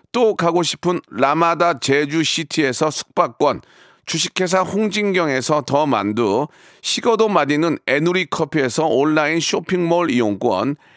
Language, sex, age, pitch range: Korean, male, 40-59, 155-205 Hz